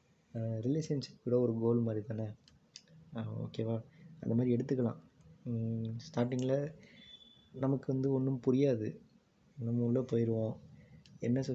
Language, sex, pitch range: Tamil, male, 115-135 Hz